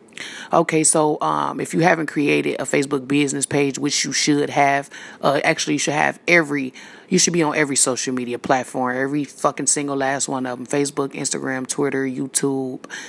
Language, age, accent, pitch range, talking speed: English, 20-39, American, 135-175 Hz, 185 wpm